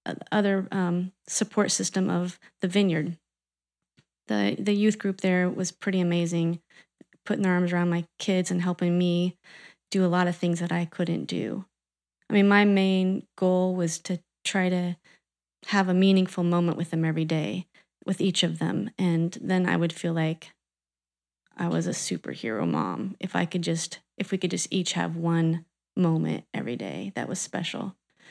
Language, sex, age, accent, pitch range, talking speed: English, female, 20-39, American, 175-210 Hz, 175 wpm